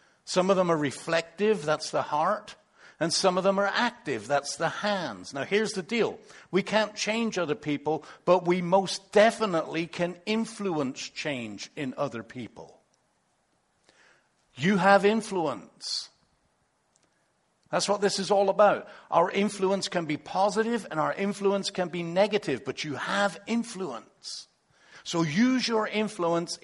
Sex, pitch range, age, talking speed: male, 135-200 Hz, 60-79, 145 wpm